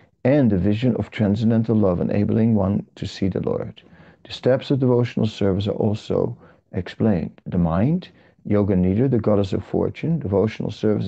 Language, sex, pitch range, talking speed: English, male, 100-115 Hz, 160 wpm